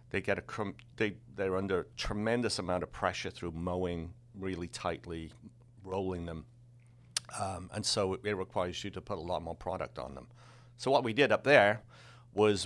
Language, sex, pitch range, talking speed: English, male, 90-115 Hz, 185 wpm